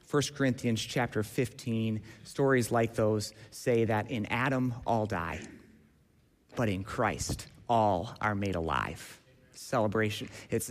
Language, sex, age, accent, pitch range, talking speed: English, male, 30-49, American, 110-140 Hz, 125 wpm